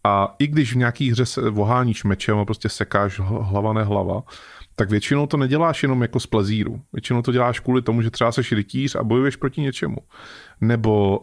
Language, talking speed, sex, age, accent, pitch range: Czech, 200 wpm, male, 30-49, native, 110-140 Hz